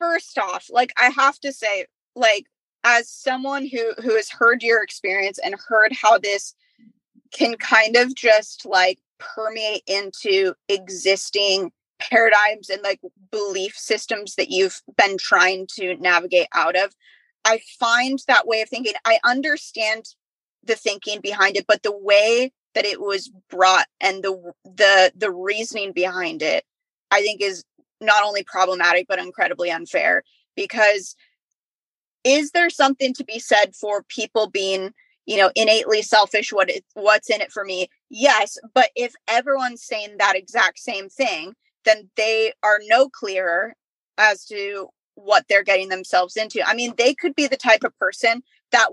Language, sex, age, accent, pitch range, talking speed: English, female, 20-39, American, 195-245 Hz, 155 wpm